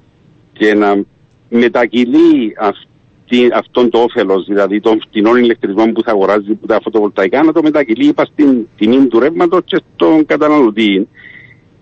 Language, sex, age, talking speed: Greek, male, 50-69, 130 wpm